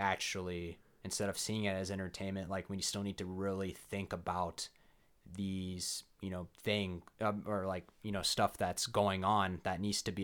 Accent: American